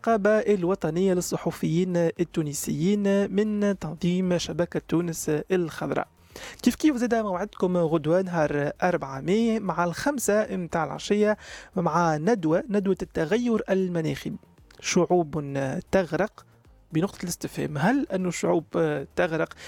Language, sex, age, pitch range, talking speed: Arabic, male, 30-49, 160-195 Hz, 100 wpm